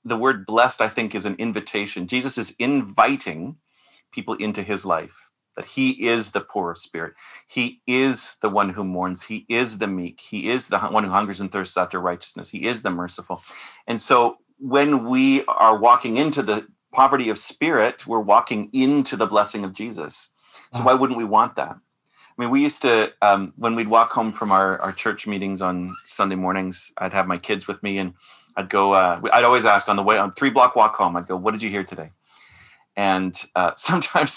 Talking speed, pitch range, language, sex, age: 205 wpm, 95-130 Hz, English, male, 30-49